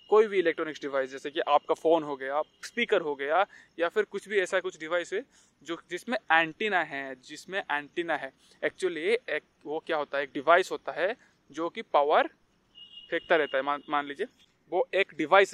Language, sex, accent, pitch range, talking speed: Hindi, male, native, 155-215 Hz, 195 wpm